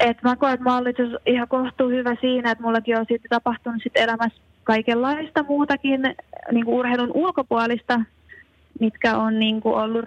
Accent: native